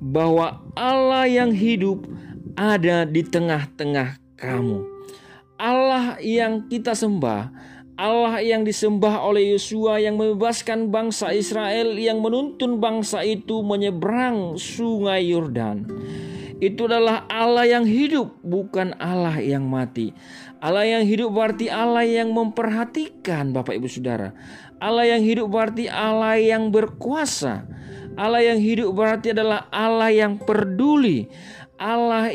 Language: Indonesian